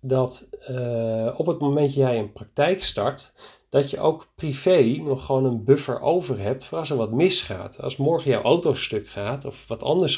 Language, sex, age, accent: Dutch, male, 40-59, Dutch